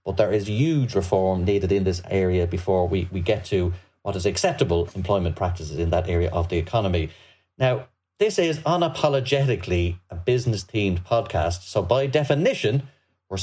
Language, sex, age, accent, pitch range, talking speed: English, male, 30-49, Irish, 100-140 Hz, 160 wpm